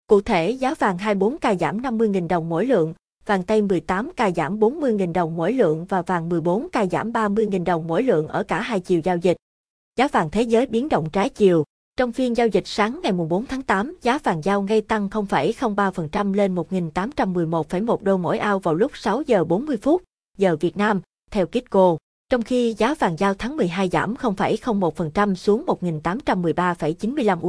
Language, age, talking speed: Vietnamese, 20-39, 185 wpm